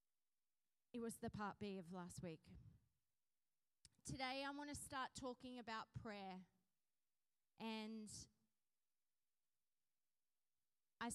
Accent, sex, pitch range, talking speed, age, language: Australian, female, 220-270 Hz, 95 wpm, 30-49, English